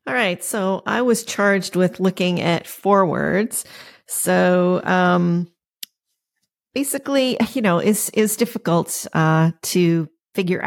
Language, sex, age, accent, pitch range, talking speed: English, female, 40-59, American, 170-200 Hz, 120 wpm